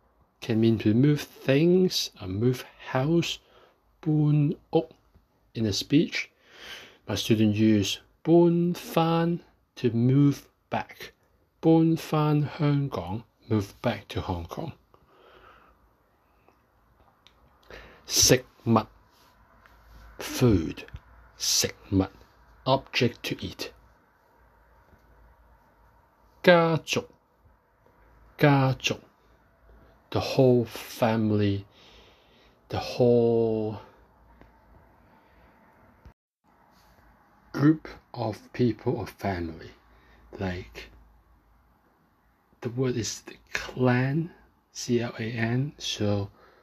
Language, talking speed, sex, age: English, 70 wpm, male, 60-79